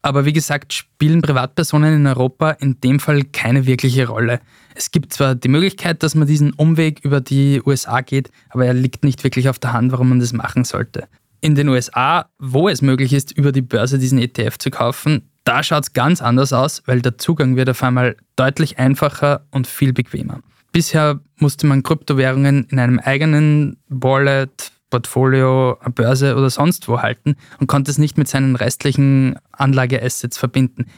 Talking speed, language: 180 wpm, German